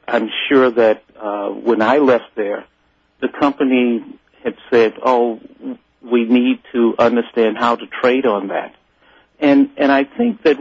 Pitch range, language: 115-135 Hz, English